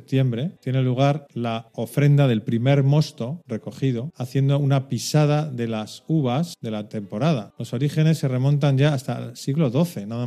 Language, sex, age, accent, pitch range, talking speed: Spanish, male, 40-59, Spanish, 115-145 Hz, 165 wpm